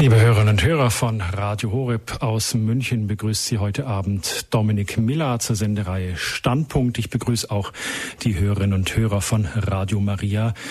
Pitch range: 105-130 Hz